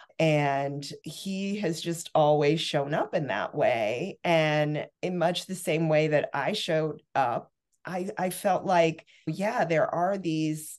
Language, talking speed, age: English, 155 wpm, 30-49